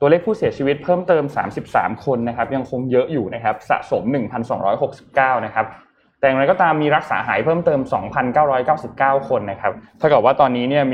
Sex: male